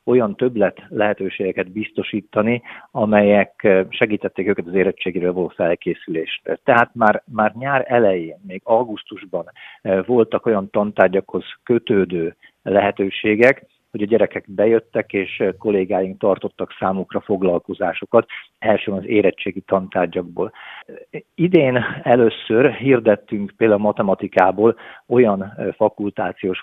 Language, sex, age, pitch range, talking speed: Hungarian, male, 50-69, 95-120 Hz, 100 wpm